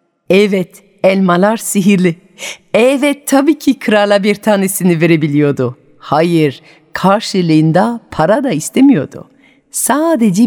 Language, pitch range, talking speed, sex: Turkish, 165-235 Hz, 90 wpm, female